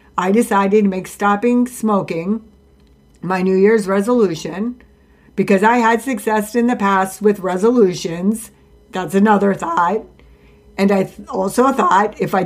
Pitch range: 175-215 Hz